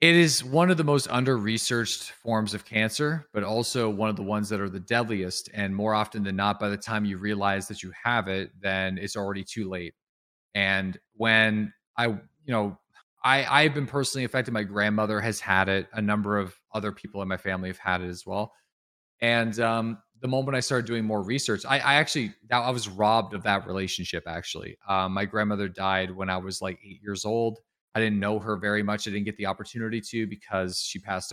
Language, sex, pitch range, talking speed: English, male, 100-115 Hz, 215 wpm